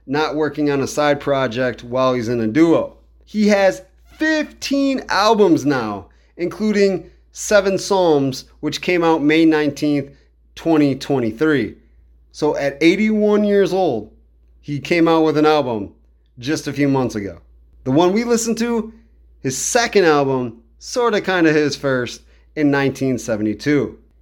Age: 30-49